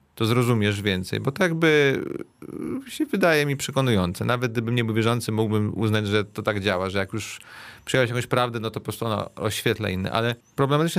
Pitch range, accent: 110-130 Hz, native